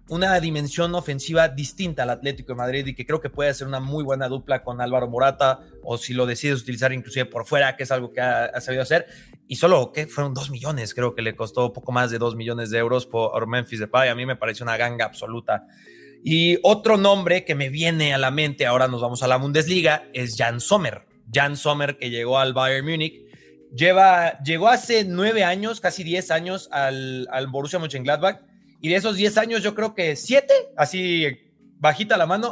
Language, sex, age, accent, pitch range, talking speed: Spanish, male, 30-49, Mexican, 130-175 Hz, 210 wpm